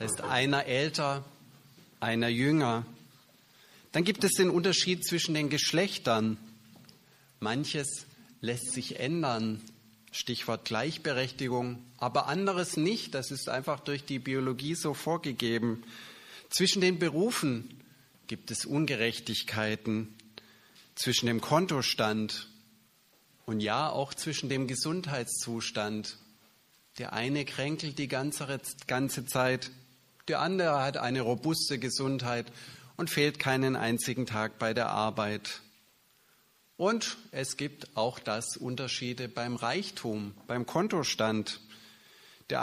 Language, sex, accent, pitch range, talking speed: German, male, German, 115-150 Hz, 105 wpm